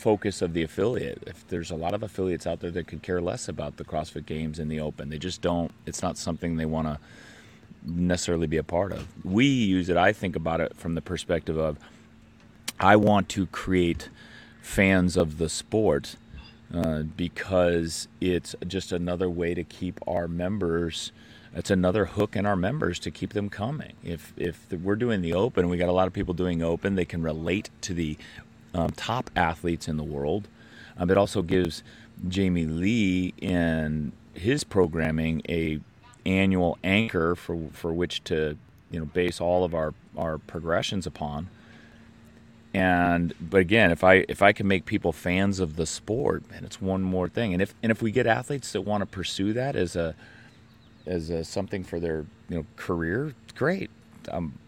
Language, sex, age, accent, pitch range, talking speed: English, male, 30-49, American, 80-100 Hz, 185 wpm